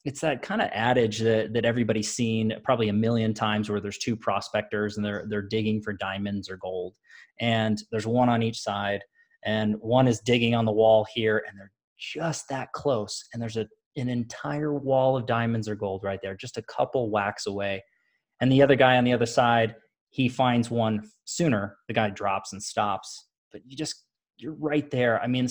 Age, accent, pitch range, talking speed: 20-39, American, 105-125 Hz, 200 wpm